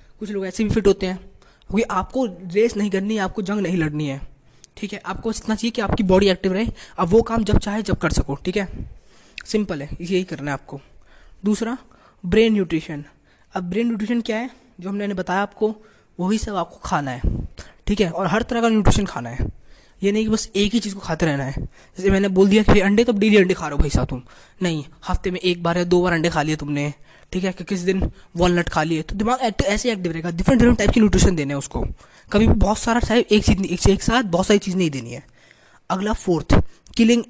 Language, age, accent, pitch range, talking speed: Hindi, 20-39, native, 165-220 Hz, 235 wpm